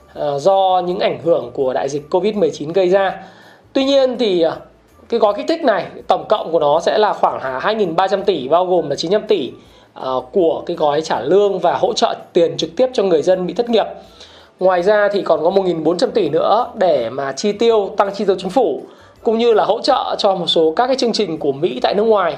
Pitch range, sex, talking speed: 180-230 Hz, male, 225 wpm